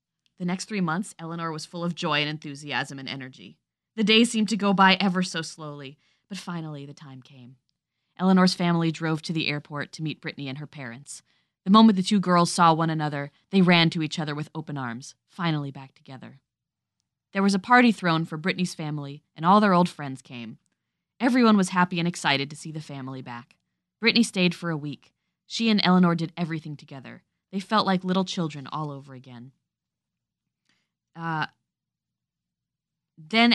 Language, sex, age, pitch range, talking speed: English, female, 20-39, 145-185 Hz, 185 wpm